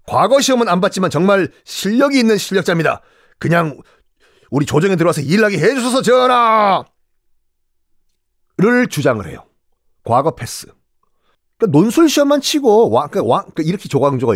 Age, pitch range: 40-59, 155-225 Hz